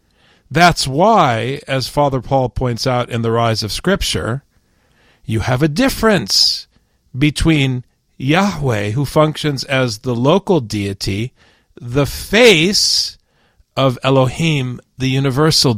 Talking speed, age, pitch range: 115 wpm, 40-59, 115-160 Hz